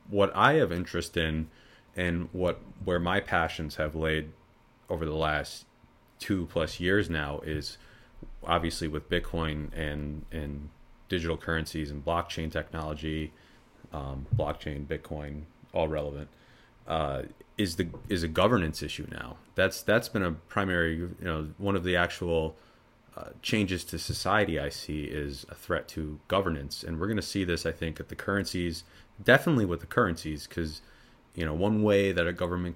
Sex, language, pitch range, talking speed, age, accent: male, English, 75-90 Hz, 160 wpm, 30-49, American